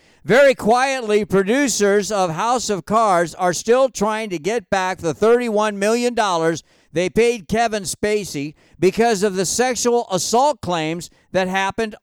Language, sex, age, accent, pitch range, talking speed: English, male, 50-69, American, 190-240 Hz, 140 wpm